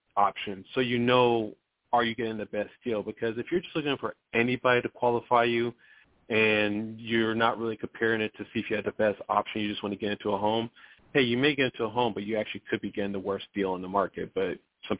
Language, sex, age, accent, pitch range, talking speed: English, male, 40-59, American, 105-125 Hz, 250 wpm